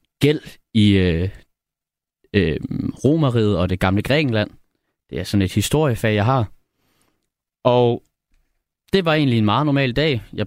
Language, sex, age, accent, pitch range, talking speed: Danish, male, 30-49, native, 100-130 Hz, 145 wpm